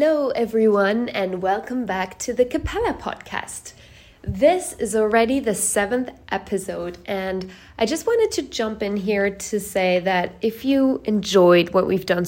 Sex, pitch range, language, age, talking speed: female, 190-245 Hz, English, 20-39, 155 wpm